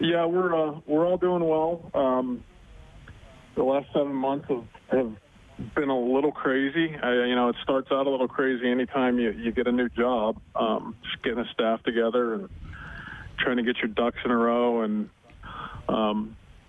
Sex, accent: male, American